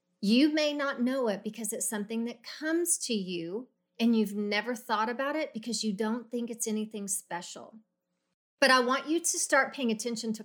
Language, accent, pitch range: English, American, 205-265 Hz